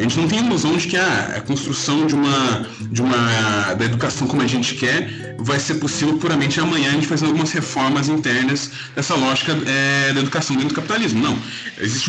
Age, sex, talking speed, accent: 20-39, male, 205 wpm, Brazilian